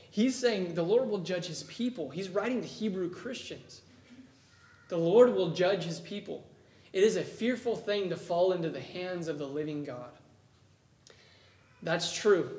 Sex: male